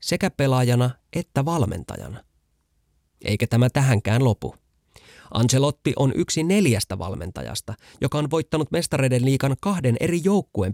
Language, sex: Finnish, male